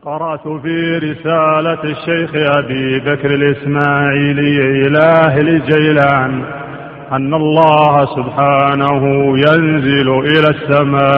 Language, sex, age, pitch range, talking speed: Arabic, male, 40-59, 140-155 Hz, 80 wpm